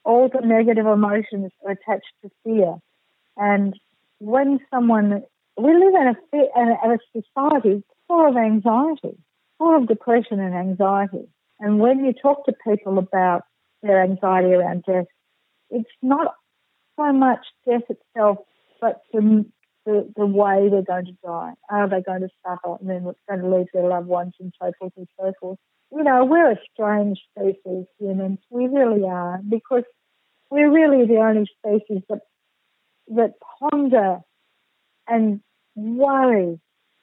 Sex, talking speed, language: female, 155 wpm, English